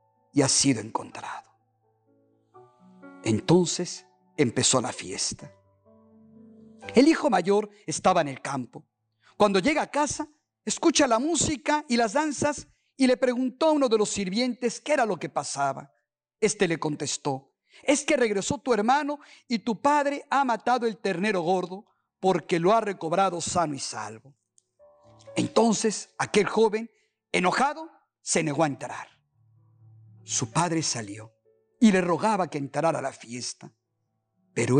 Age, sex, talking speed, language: 50-69, male, 140 wpm, Spanish